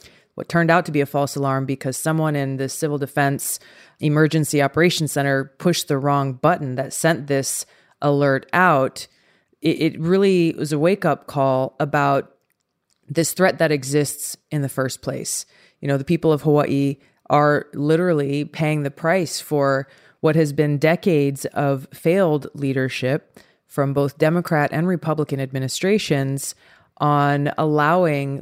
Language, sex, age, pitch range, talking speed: English, female, 20-39, 140-160 Hz, 145 wpm